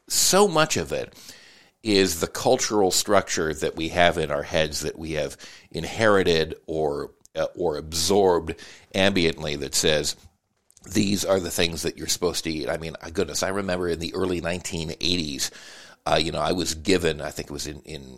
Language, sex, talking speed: English, male, 180 wpm